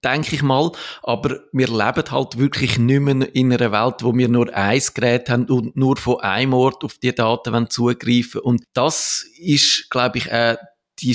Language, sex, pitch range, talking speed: German, male, 110-125 Hz, 190 wpm